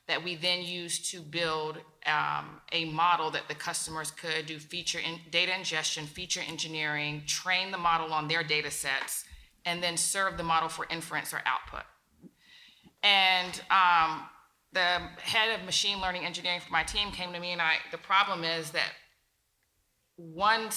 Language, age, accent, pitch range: English, 30-49, American, 160-190 Hz